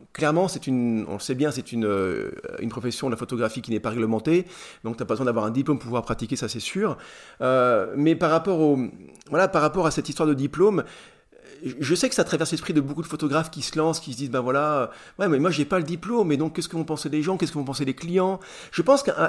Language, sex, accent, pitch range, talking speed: French, male, French, 130-165 Hz, 275 wpm